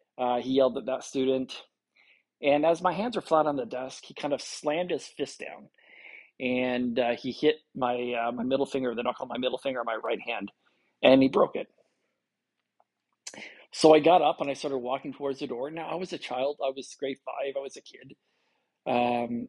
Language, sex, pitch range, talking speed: English, male, 125-155 Hz, 215 wpm